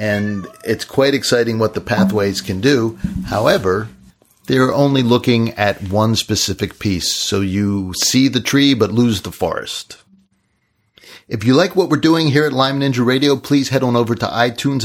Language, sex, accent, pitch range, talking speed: English, male, American, 100-130 Hz, 175 wpm